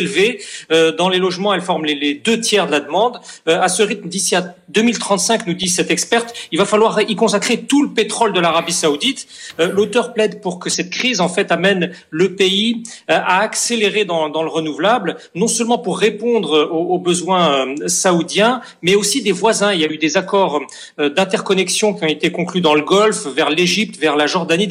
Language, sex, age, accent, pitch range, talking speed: French, male, 40-59, French, 165-215 Hz, 190 wpm